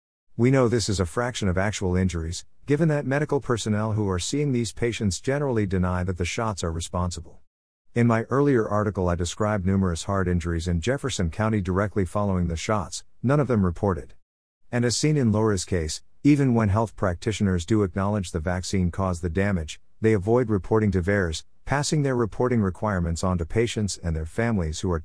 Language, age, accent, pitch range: English, 50-69, American, 90-110 Hz